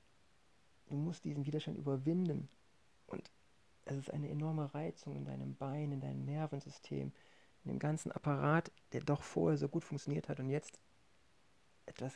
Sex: male